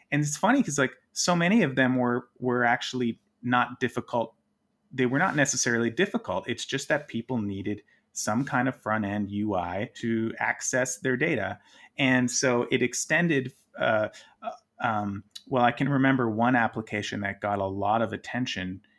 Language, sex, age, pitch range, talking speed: English, male, 30-49, 105-130 Hz, 160 wpm